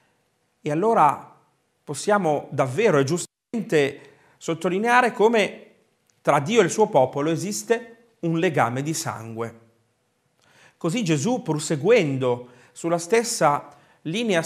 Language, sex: Italian, male